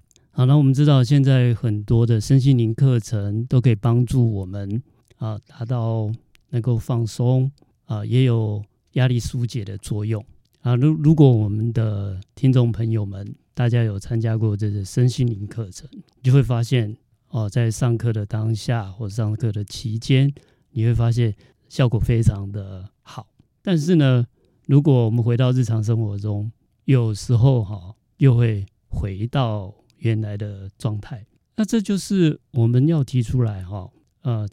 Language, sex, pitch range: Chinese, male, 105-125 Hz